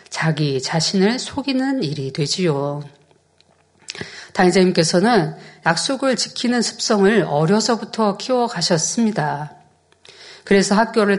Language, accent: Korean, native